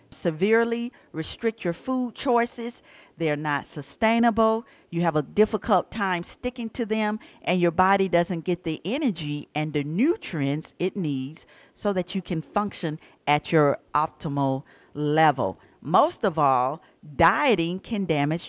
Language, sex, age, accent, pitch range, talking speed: English, female, 50-69, American, 155-210 Hz, 140 wpm